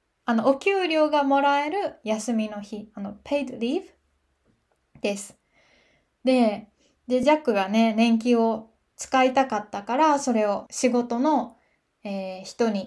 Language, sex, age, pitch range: Japanese, female, 20-39, 215-270 Hz